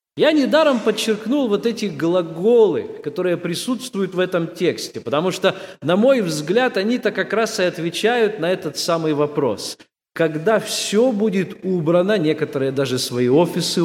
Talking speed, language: 145 wpm, Russian